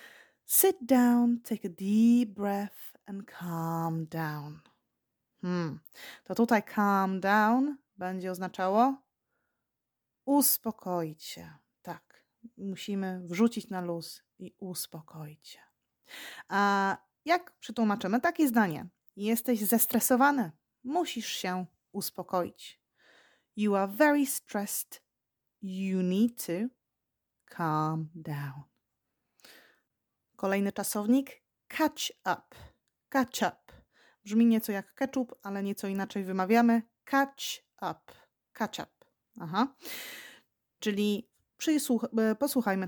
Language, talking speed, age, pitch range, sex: Polish, 90 wpm, 20-39, 185-245 Hz, female